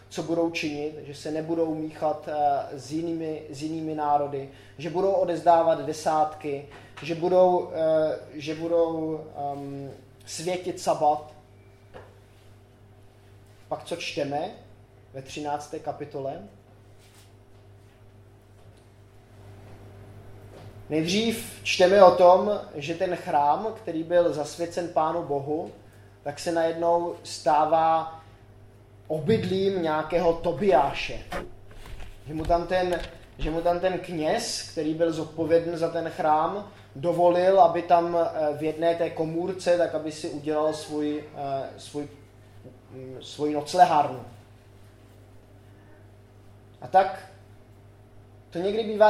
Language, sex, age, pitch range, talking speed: Czech, male, 20-39, 105-170 Hz, 100 wpm